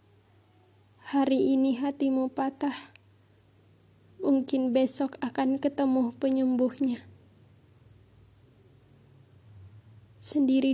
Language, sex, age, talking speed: Indonesian, female, 10-29, 55 wpm